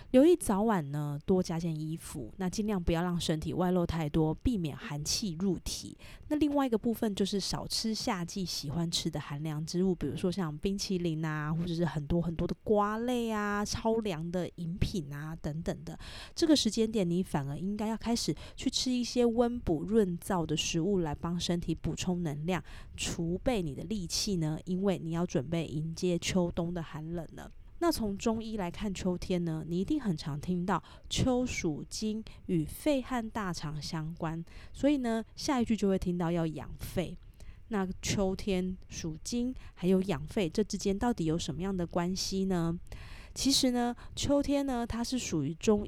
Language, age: Chinese, 20-39